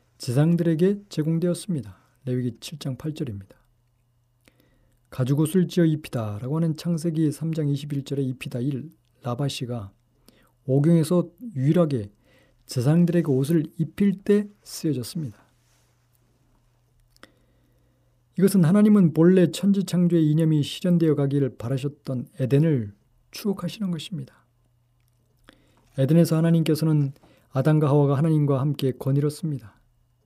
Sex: male